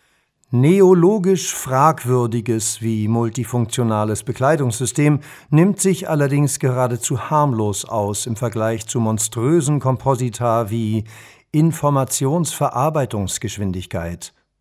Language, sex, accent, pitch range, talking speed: German, male, German, 115-150 Hz, 75 wpm